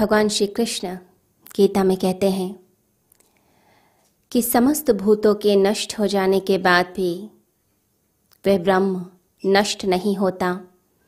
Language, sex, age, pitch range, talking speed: Hindi, female, 20-39, 190-220 Hz, 120 wpm